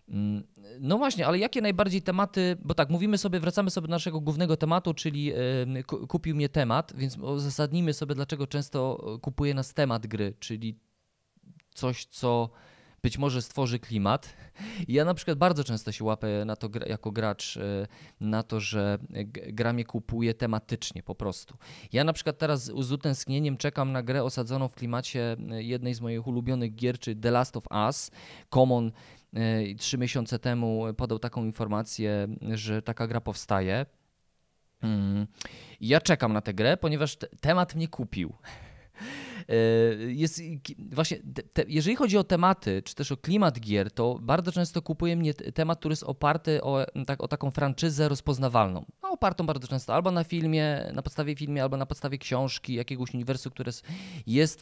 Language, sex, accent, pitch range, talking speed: Polish, male, native, 115-155 Hz, 165 wpm